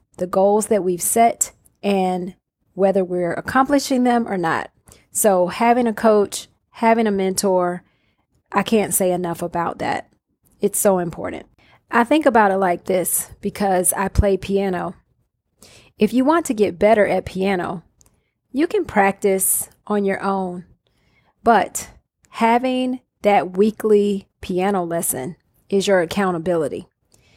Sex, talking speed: female, 135 wpm